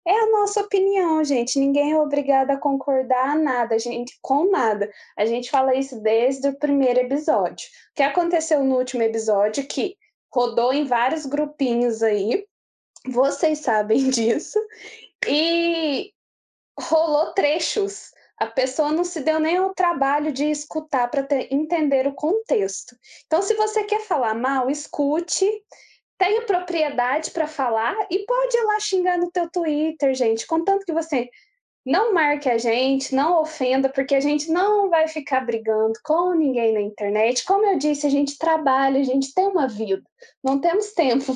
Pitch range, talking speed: 250-335 Hz, 160 wpm